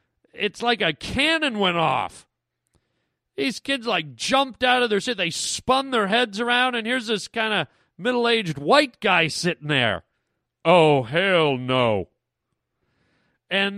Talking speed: 145 wpm